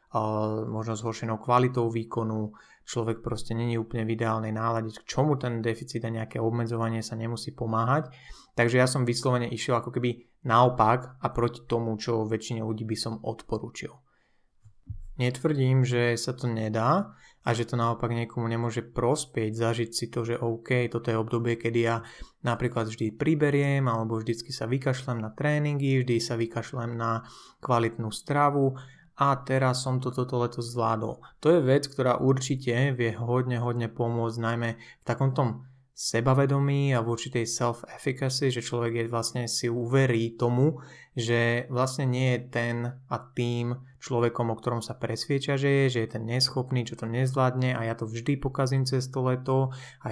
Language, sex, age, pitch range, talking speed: Slovak, male, 20-39, 115-130 Hz, 160 wpm